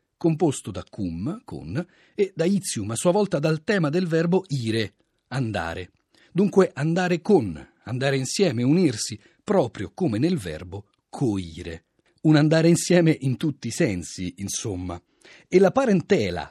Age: 40-59